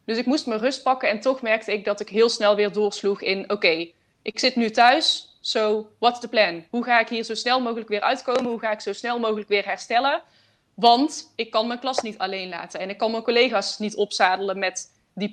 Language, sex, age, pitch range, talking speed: Dutch, female, 20-39, 195-230 Hz, 235 wpm